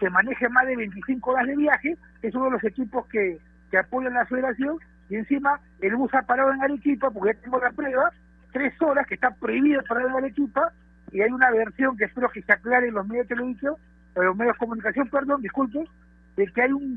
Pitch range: 180-260 Hz